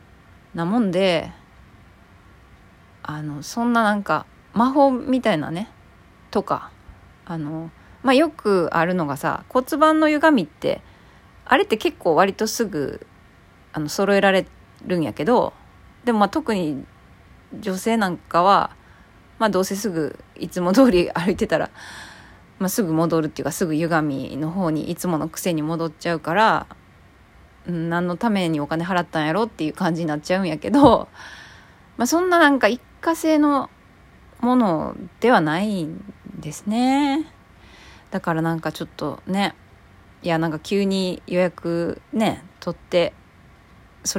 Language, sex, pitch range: Japanese, female, 160-220 Hz